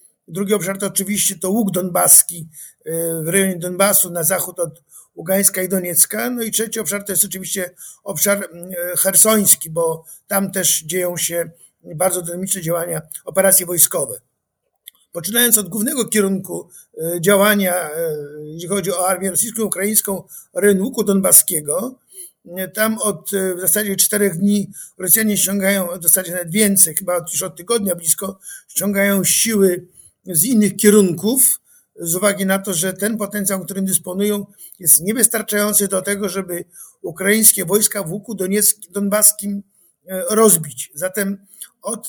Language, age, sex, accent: Polish, 50-69, male, native